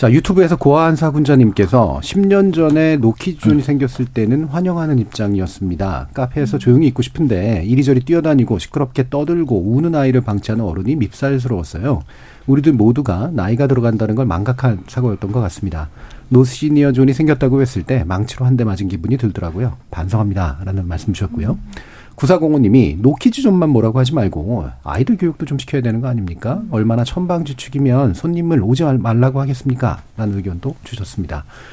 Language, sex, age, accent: Korean, male, 40-59, native